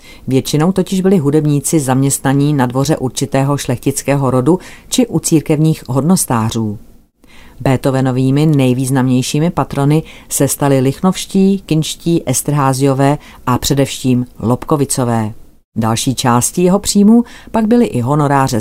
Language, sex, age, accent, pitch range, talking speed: Czech, female, 40-59, native, 130-170 Hz, 105 wpm